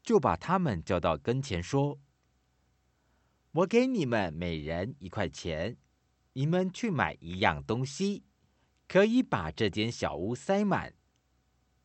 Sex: male